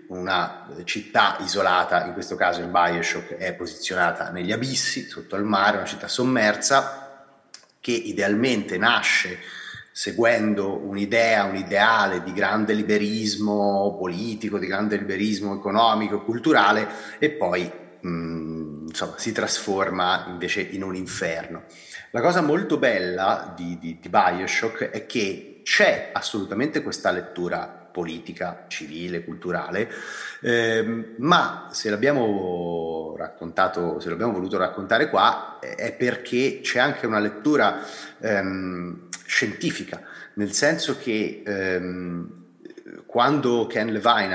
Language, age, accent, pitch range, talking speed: Italian, 30-49, native, 90-110 Hz, 120 wpm